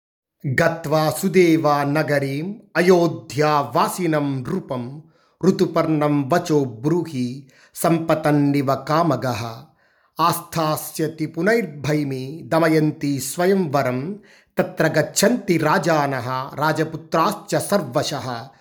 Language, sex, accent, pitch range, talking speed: Telugu, male, native, 150-190 Hz, 50 wpm